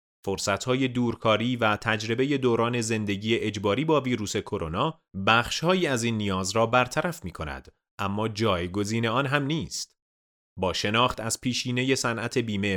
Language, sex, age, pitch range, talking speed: Persian, male, 30-49, 100-130 Hz, 130 wpm